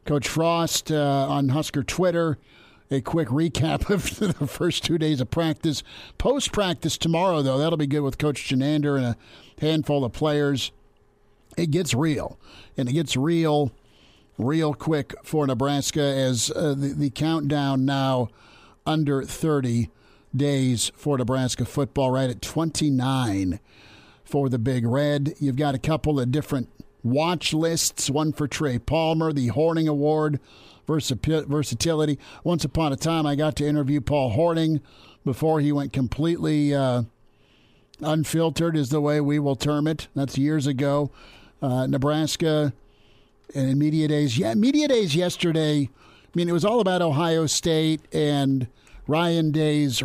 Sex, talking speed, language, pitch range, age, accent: male, 150 wpm, English, 135-160 Hz, 50-69, American